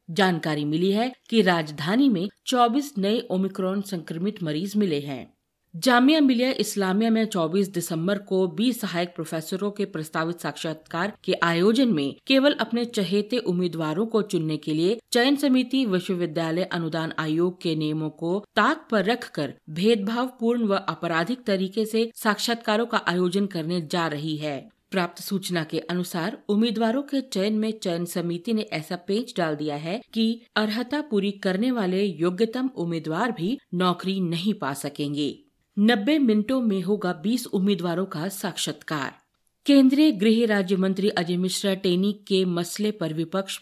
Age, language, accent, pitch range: 50-69, Hindi, native, 170-220 Hz